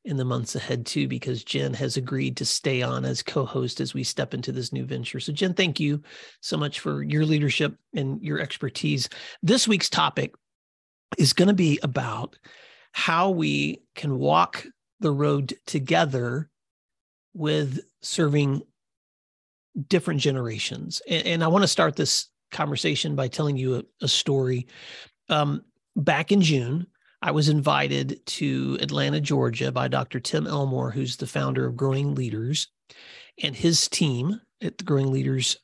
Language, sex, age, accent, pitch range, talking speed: English, male, 40-59, American, 125-160 Hz, 155 wpm